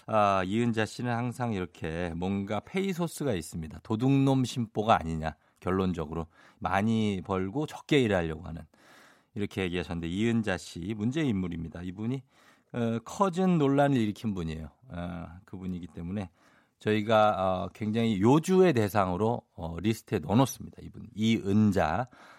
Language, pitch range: Korean, 95-135 Hz